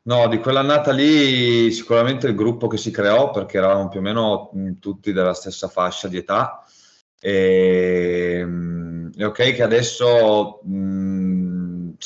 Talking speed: 145 wpm